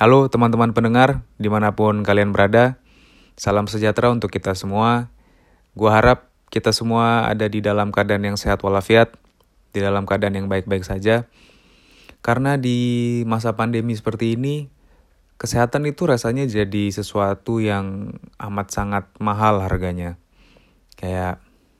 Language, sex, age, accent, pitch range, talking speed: Indonesian, male, 20-39, native, 100-115 Hz, 125 wpm